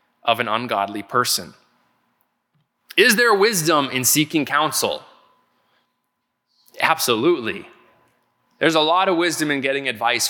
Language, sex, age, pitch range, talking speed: English, male, 20-39, 115-150 Hz, 110 wpm